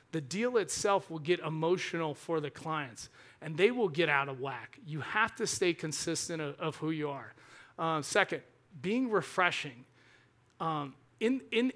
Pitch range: 155-190 Hz